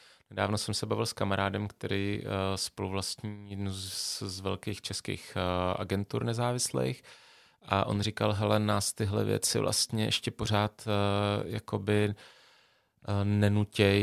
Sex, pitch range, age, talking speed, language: male, 95-110 Hz, 30-49, 135 wpm, Czech